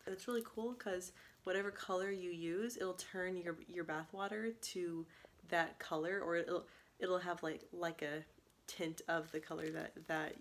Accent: American